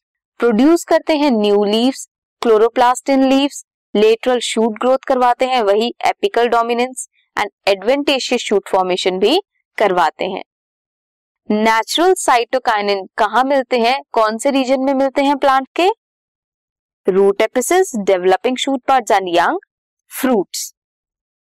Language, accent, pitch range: Hindi, native, 215-285 Hz